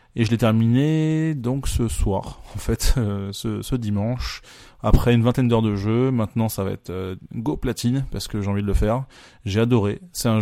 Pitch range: 105-125 Hz